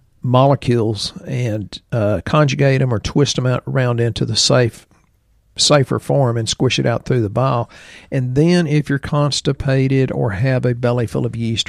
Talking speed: 175 wpm